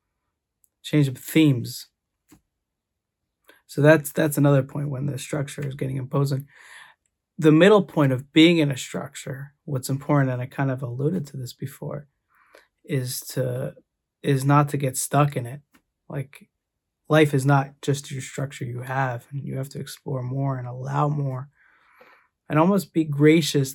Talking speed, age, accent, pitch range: 160 wpm, 20-39, American, 135-150 Hz